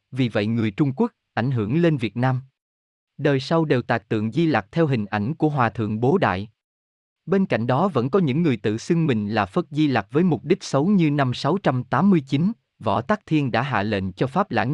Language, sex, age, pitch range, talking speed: Vietnamese, male, 20-39, 110-155 Hz, 225 wpm